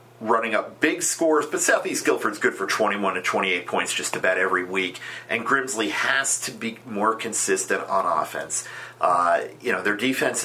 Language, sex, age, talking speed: English, male, 40-59, 180 wpm